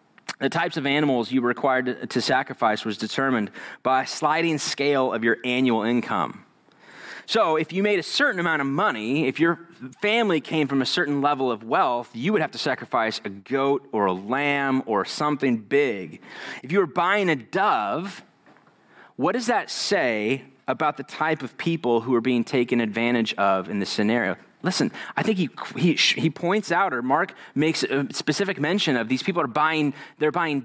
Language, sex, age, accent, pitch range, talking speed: English, male, 30-49, American, 130-175 Hz, 190 wpm